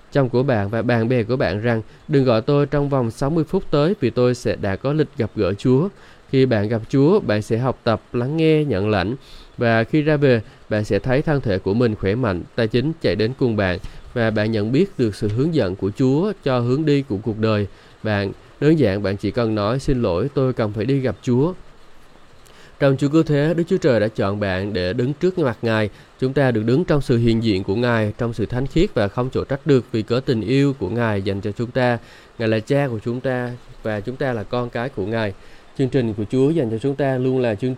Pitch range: 110-140 Hz